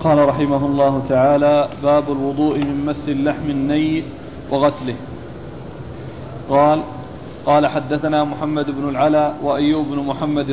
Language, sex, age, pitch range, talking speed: Arabic, male, 40-59, 140-150 Hz, 115 wpm